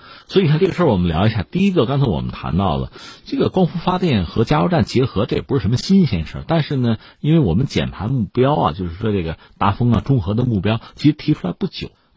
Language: Chinese